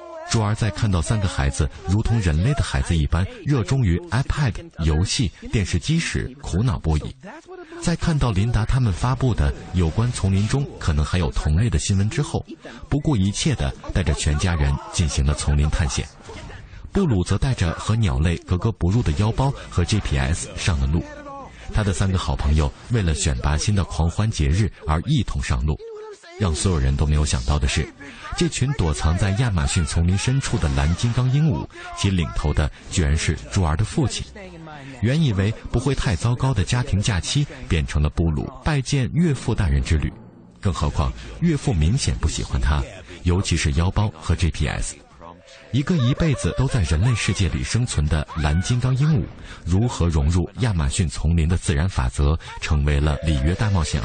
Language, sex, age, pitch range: Chinese, male, 50-69, 80-120 Hz